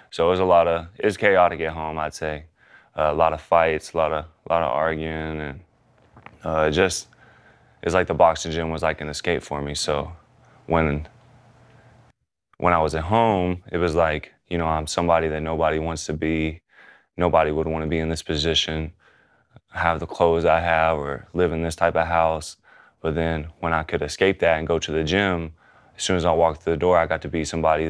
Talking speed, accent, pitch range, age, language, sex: 220 wpm, American, 80-85 Hz, 20-39, English, male